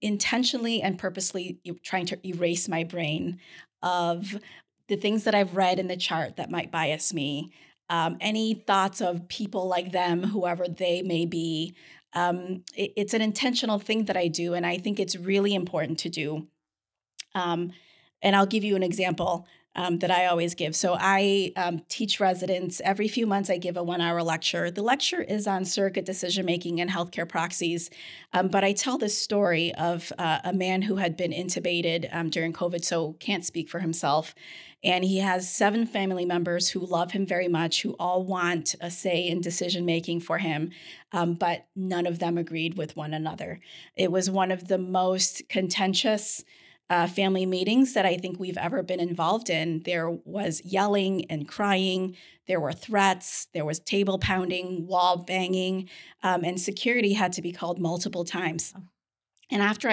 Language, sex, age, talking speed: English, female, 30-49, 175 wpm